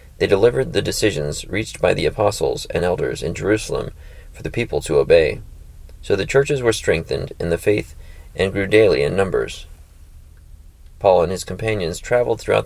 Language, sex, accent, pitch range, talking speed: English, male, American, 80-115 Hz, 170 wpm